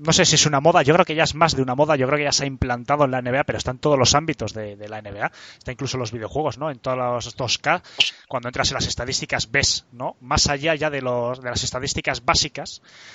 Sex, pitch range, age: male, 120-150 Hz, 20-39